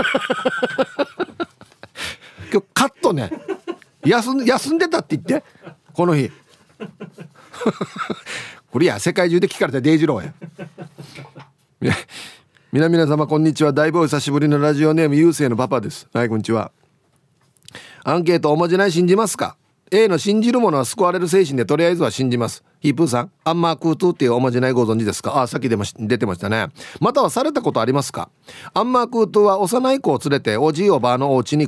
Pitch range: 125-170 Hz